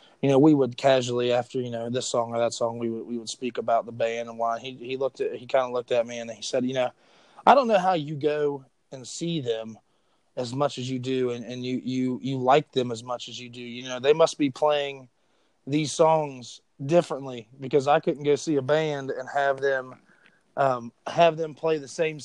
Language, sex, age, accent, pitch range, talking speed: English, male, 20-39, American, 125-155 Hz, 240 wpm